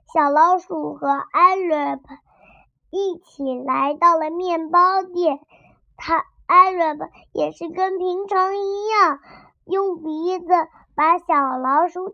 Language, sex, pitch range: Chinese, male, 295-365 Hz